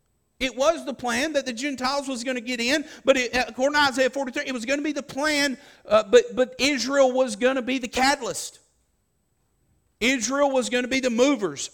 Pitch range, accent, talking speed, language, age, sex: 160-265 Hz, American, 210 wpm, English, 50-69, male